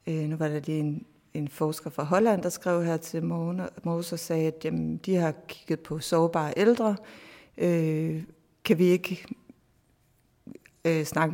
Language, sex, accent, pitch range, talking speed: Danish, female, native, 160-190 Hz, 145 wpm